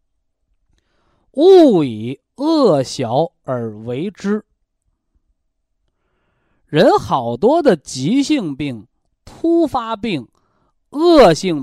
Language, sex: Chinese, male